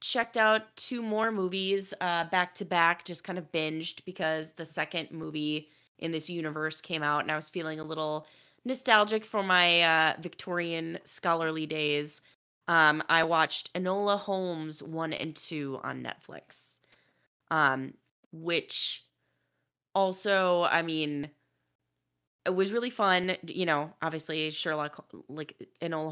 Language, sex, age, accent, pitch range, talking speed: English, female, 20-39, American, 145-180 Hz, 140 wpm